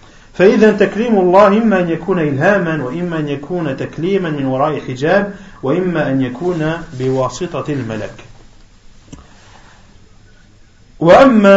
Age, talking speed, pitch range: 40-59, 105 wpm, 135-180 Hz